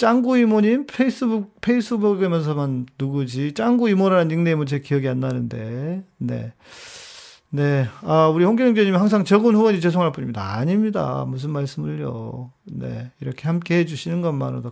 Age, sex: 40-59, male